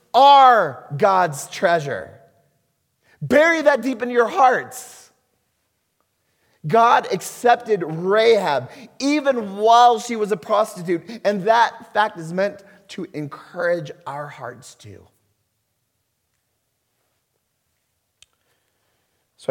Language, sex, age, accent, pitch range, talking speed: English, male, 30-49, American, 120-180 Hz, 90 wpm